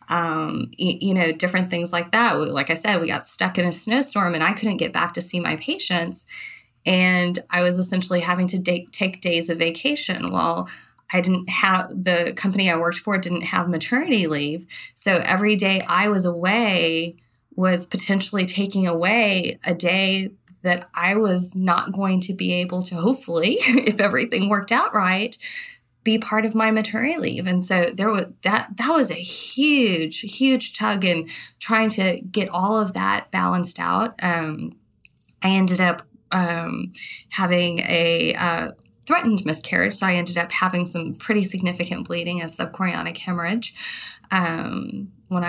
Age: 20-39